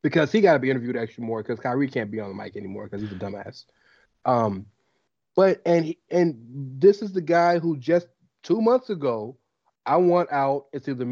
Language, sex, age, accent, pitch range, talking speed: English, male, 30-49, American, 125-180 Hz, 210 wpm